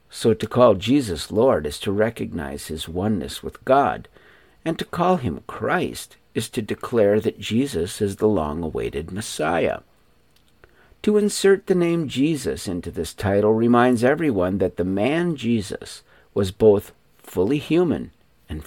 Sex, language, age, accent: male, English, 50-69, American